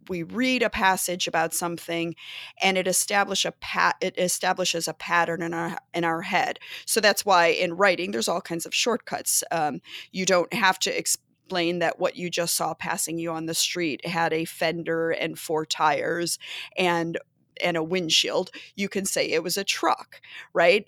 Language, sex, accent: English, female, American